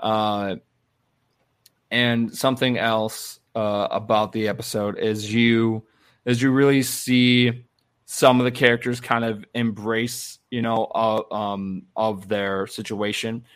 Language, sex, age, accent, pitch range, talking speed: English, male, 20-39, American, 105-125 Hz, 125 wpm